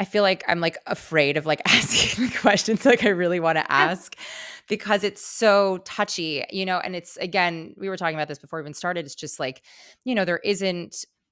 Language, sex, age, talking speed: English, female, 20-39, 215 wpm